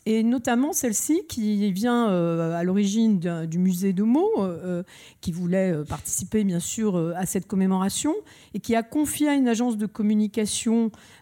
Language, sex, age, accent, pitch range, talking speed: French, female, 50-69, French, 185-250 Hz, 150 wpm